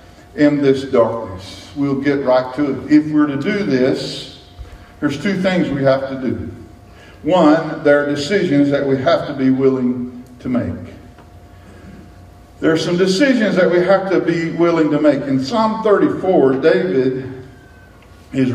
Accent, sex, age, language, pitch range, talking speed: American, male, 50-69, English, 130-185 Hz, 160 wpm